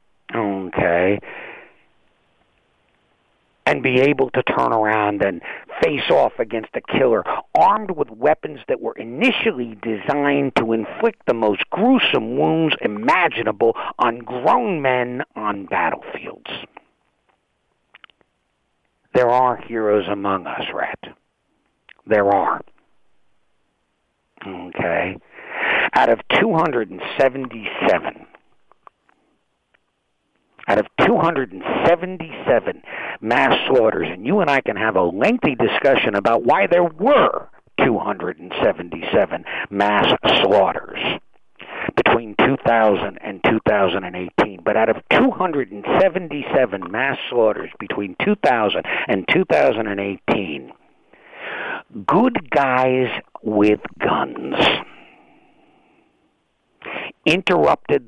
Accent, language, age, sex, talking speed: American, English, 50-69, male, 85 wpm